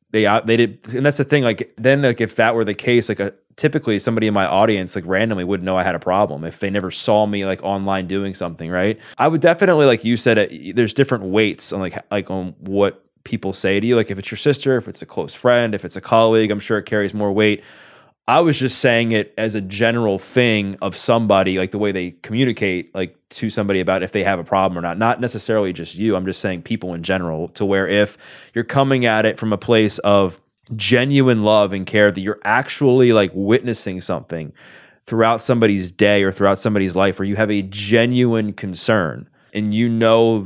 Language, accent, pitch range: English, American, 95-115 Hz